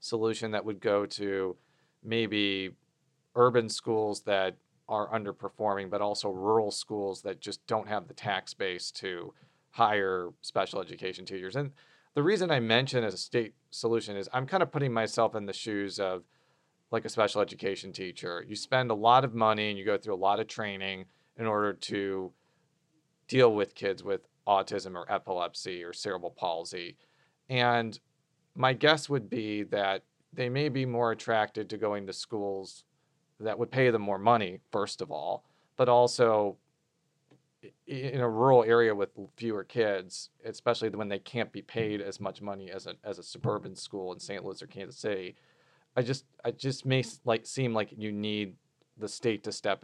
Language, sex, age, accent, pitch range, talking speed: English, male, 40-59, American, 100-130 Hz, 175 wpm